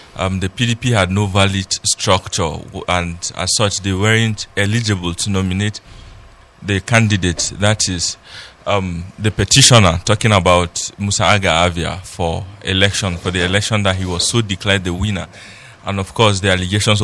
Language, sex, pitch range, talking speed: English, male, 95-110 Hz, 150 wpm